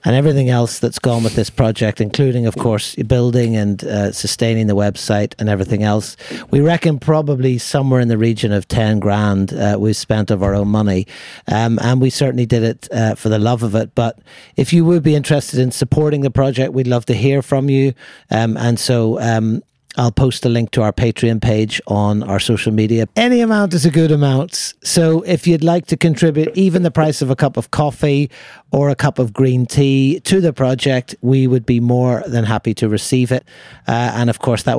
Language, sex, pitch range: English, male, 110-135 Hz